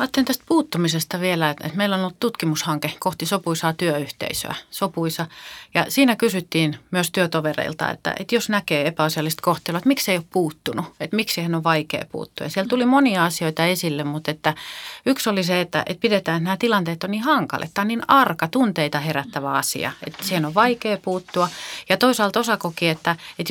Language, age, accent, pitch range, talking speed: Finnish, 30-49, native, 160-210 Hz, 180 wpm